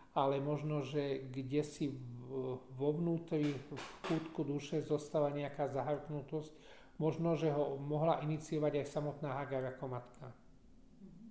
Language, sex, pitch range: Slovak, male, 140-165 Hz